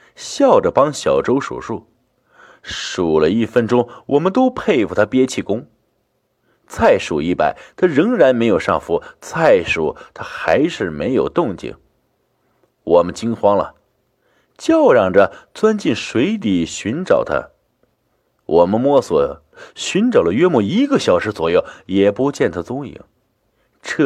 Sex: male